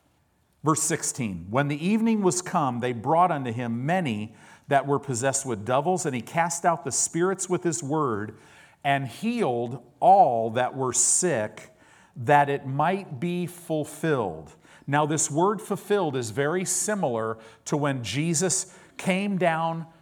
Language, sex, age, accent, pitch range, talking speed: English, male, 50-69, American, 130-175 Hz, 145 wpm